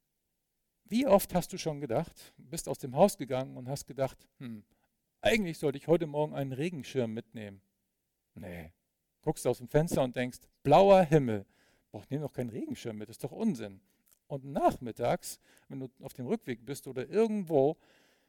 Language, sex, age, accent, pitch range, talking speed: German, male, 50-69, German, 120-165 Hz, 165 wpm